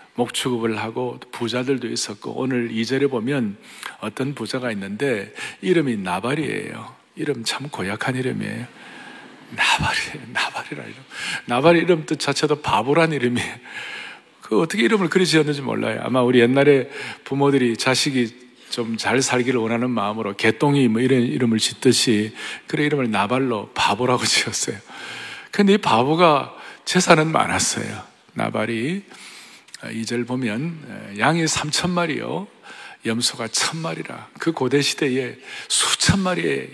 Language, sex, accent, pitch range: Korean, male, native, 120-160 Hz